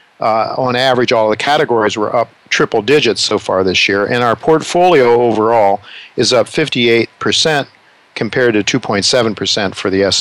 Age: 50-69